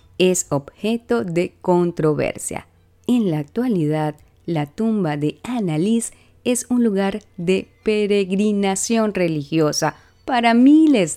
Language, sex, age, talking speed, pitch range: Spanish, female, 30-49, 100 wpm, 140-200 Hz